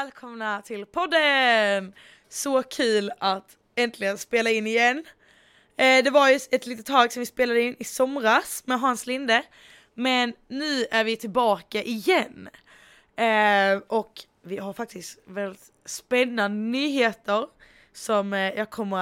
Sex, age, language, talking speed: female, 20-39, Swedish, 130 wpm